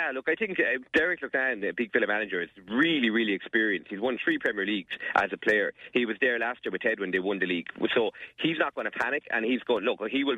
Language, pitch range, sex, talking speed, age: English, 110-135 Hz, male, 260 wpm, 30-49